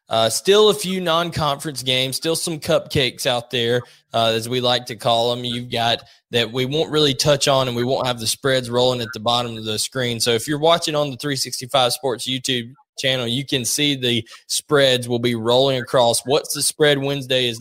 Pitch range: 120-135 Hz